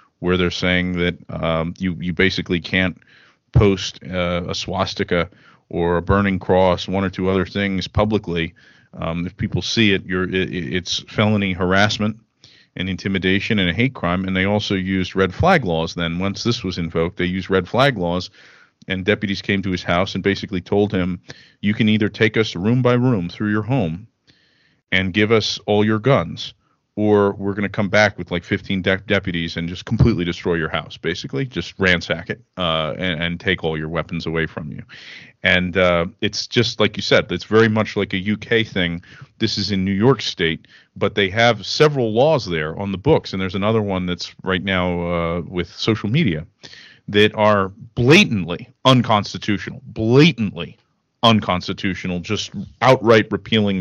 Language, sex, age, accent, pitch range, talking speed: English, male, 40-59, American, 90-110 Hz, 180 wpm